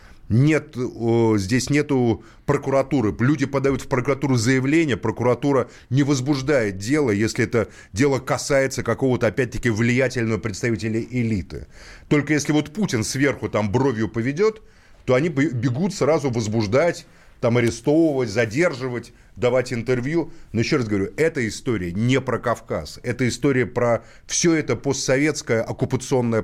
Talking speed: 125 wpm